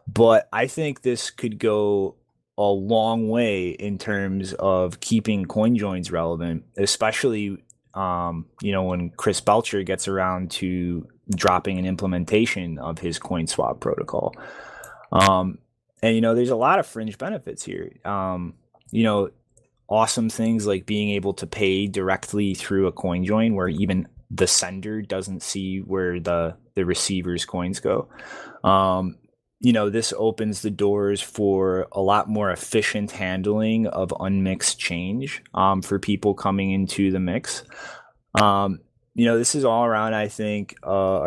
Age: 20-39